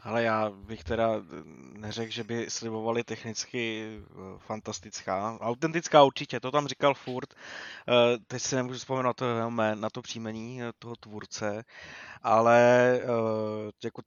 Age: 20-39